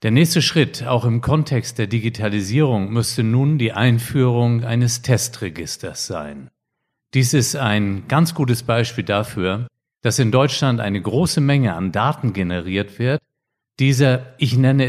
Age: 50-69